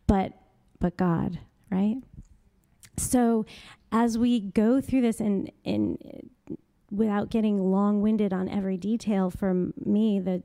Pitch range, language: 185-220 Hz, English